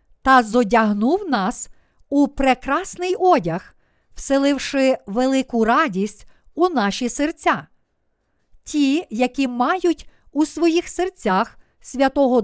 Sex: female